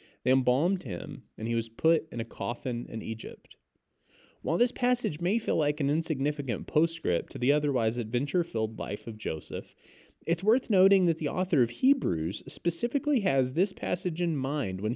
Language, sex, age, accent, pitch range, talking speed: English, male, 30-49, American, 110-165 Hz, 175 wpm